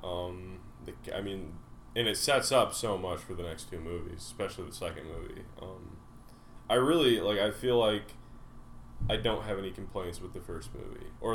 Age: 10-29